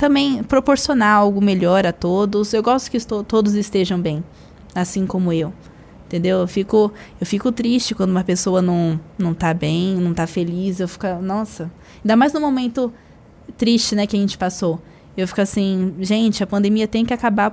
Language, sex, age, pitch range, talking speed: Portuguese, female, 20-39, 185-230 Hz, 185 wpm